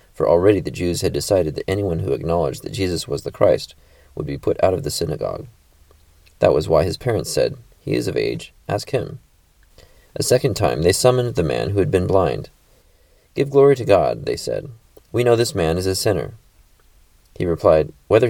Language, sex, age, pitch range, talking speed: English, male, 30-49, 85-120 Hz, 200 wpm